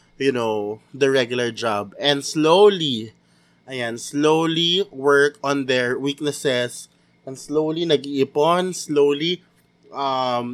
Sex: male